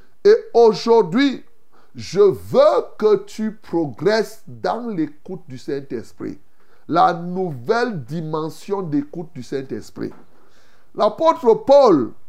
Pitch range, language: 190-310 Hz, French